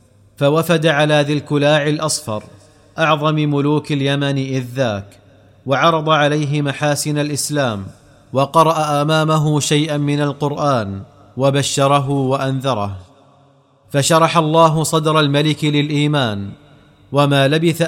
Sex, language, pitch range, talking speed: male, Arabic, 130-150 Hz, 95 wpm